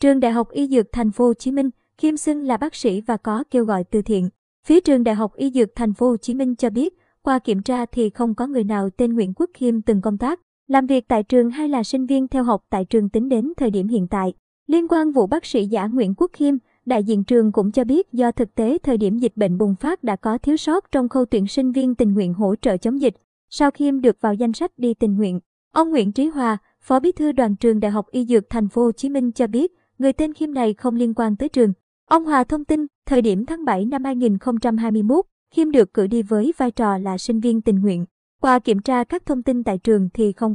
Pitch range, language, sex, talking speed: 220-270 Hz, Vietnamese, male, 260 wpm